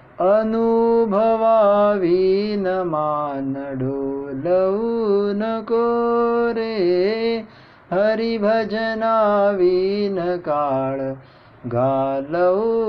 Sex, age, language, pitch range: male, 30-49, Marathi, 180-225 Hz